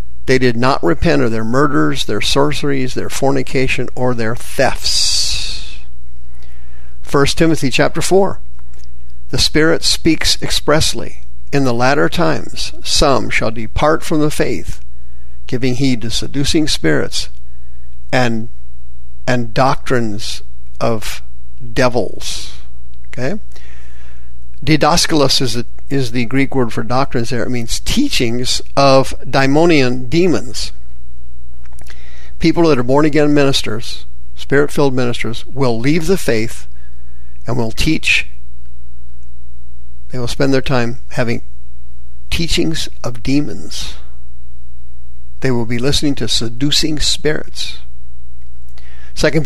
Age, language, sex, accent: 50-69, English, male, American